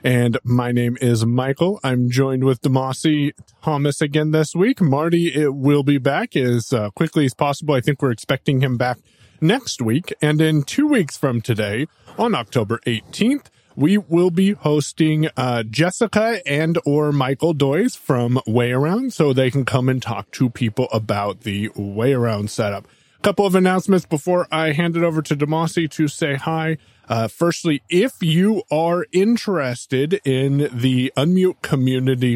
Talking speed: 165 wpm